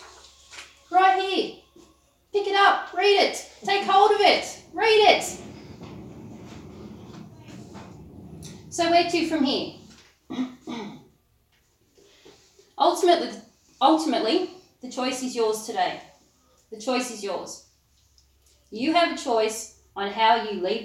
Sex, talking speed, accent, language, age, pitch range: female, 105 wpm, Australian, English, 30-49, 210-275 Hz